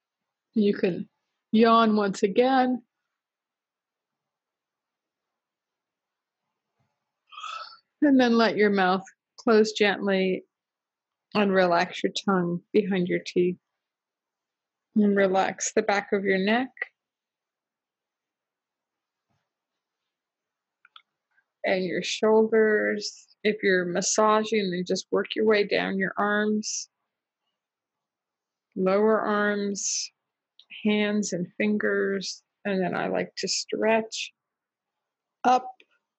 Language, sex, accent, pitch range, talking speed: English, female, American, 190-230 Hz, 85 wpm